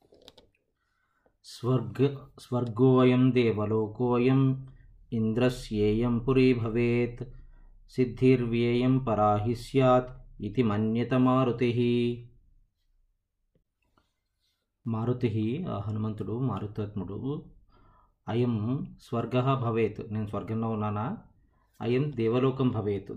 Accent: native